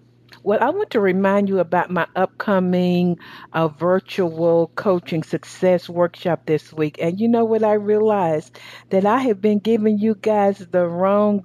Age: 60-79